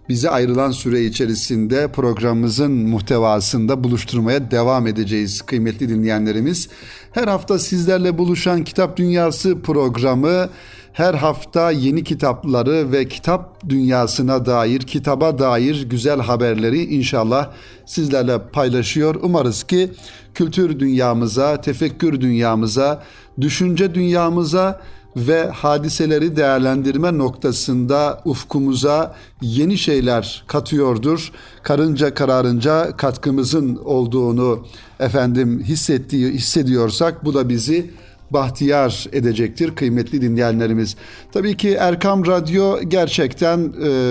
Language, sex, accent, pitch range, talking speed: Turkish, male, native, 125-160 Hz, 95 wpm